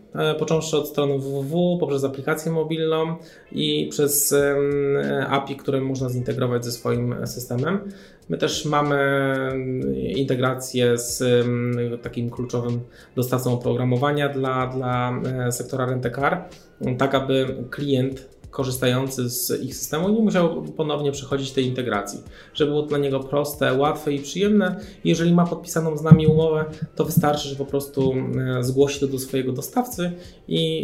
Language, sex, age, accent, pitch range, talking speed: Polish, male, 20-39, native, 125-155 Hz, 130 wpm